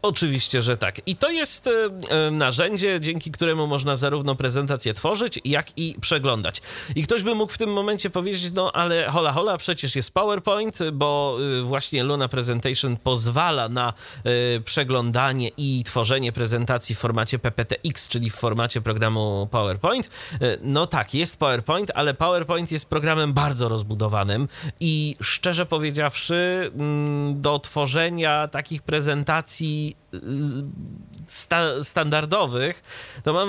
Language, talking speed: Polish, 125 wpm